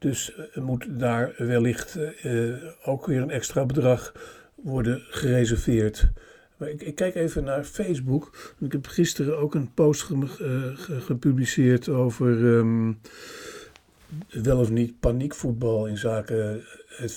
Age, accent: 60-79, Dutch